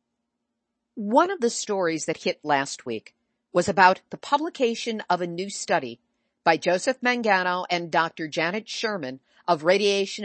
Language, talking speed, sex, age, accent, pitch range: English, 145 wpm, female, 50-69, American, 170-235 Hz